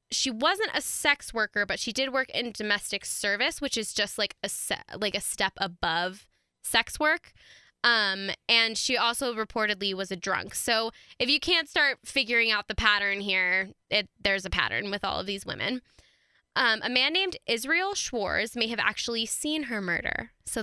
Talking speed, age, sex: 175 wpm, 10-29, female